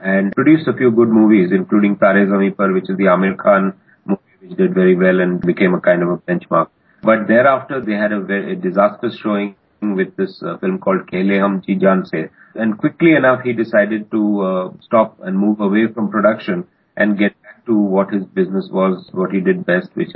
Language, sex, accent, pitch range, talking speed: English, male, Indian, 100-130 Hz, 210 wpm